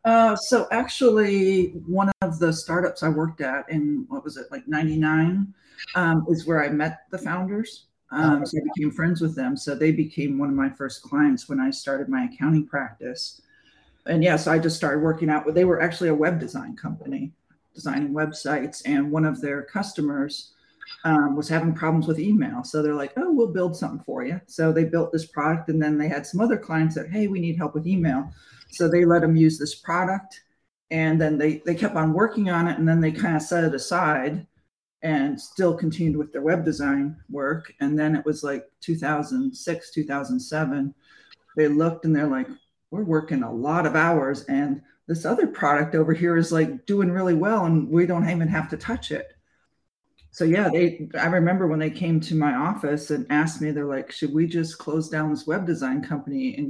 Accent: American